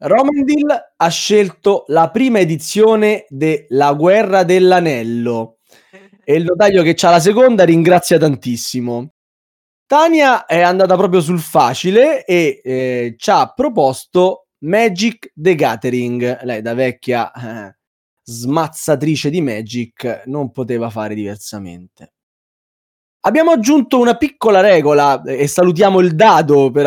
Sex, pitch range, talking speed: male, 135-215 Hz, 120 wpm